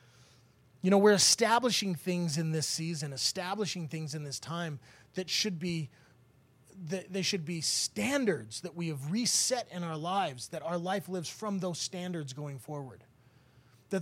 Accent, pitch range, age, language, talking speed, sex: American, 135-190 Hz, 30-49, English, 165 wpm, male